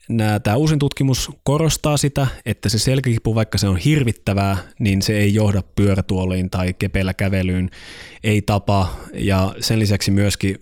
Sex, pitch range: male, 95-115 Hz